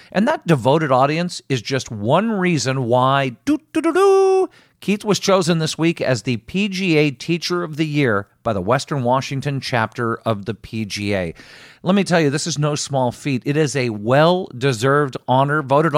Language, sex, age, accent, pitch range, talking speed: English, male, 50-69, American, 125-155 Hz, 165 wpm